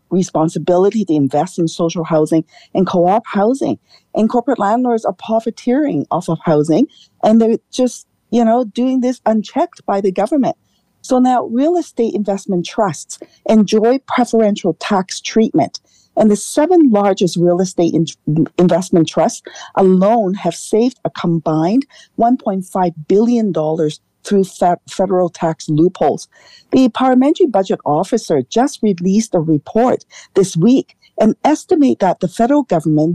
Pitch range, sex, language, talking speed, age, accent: 175-245 Hz, female, English, 135 wpm, 40-59, American